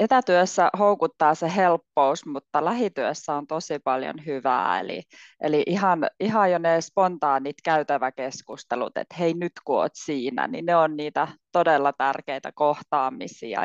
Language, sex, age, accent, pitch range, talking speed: Finnish, female, 20-39, native, 140-165 Hz, 135 wpm